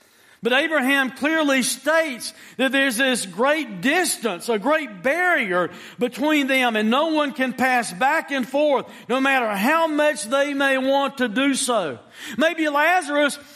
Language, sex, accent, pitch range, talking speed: English, male, American, 240-305 Hz, 150 wpm